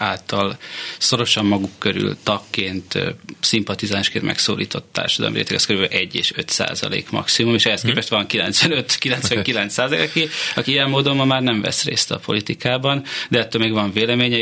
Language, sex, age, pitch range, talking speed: Hungarian, male, 30-49, 105-125 Hz, 150 wpm